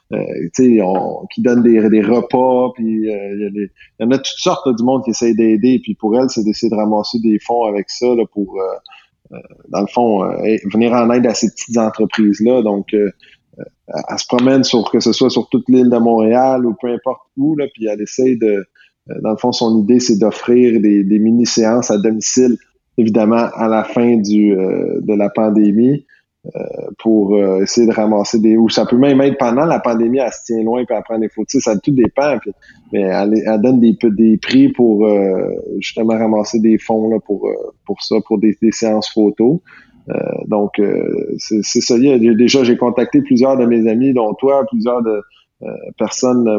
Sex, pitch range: male, 105-120 Hz